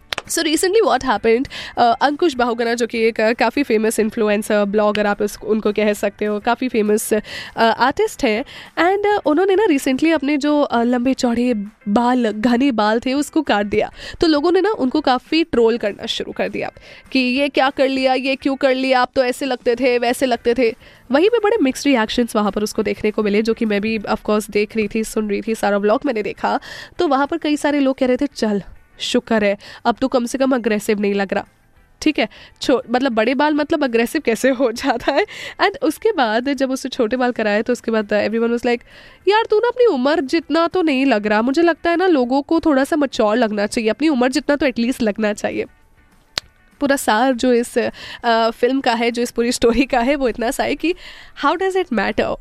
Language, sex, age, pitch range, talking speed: Hindi, female, 10-29, 225-295 Hz, 215 wpm